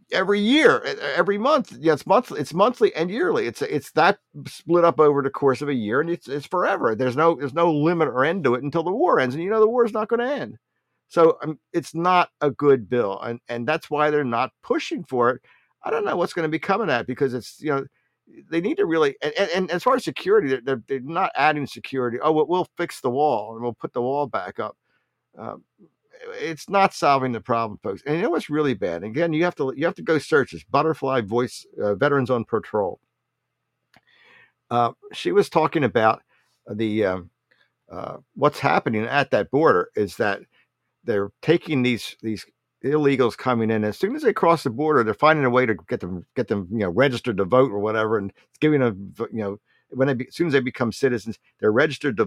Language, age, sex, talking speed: English, 50-69, male, 230 wpm